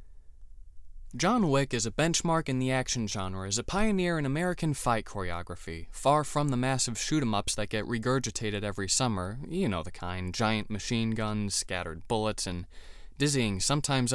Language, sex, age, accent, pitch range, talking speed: English, male, 20-39, American, 90-150 Hz, 160 wpm